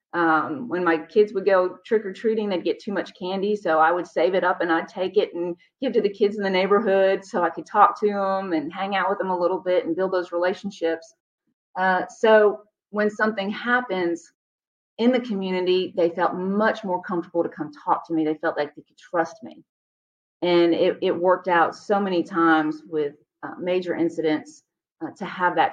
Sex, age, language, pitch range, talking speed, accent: female, 40-59, English, 170-205 Hz, 215 wpm, American